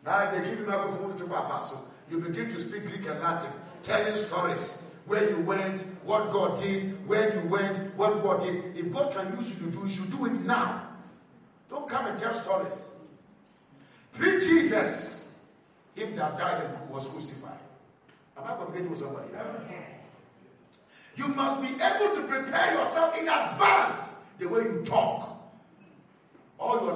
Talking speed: 170 wpm